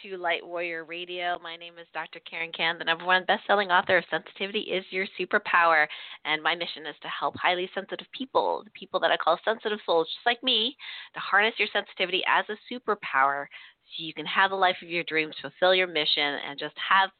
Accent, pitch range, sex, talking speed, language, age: American, 160-215 Hz, female, 205 wpm, English, 30-49